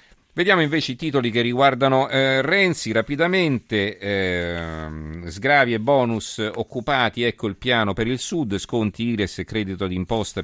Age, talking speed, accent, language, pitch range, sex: 40-59, 145 wpm, native, Italian, 95-125 Hz, male